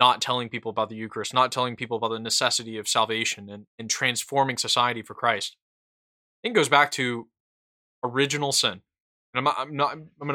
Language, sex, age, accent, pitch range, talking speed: English, male, 20-39, American, 110-140 Hz, 205 wpm